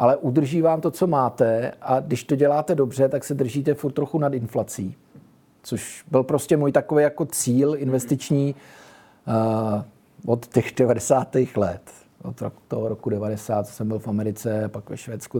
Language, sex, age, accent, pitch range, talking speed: Czech, male, 50-69, native, 115-155 Hz, 165 wpm